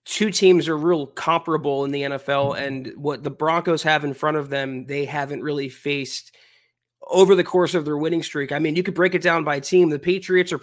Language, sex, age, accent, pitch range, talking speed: English, male, 20-39, American, 150-180 Hz, 225 wpm